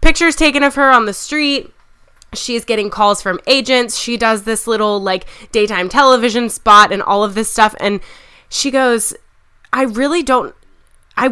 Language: English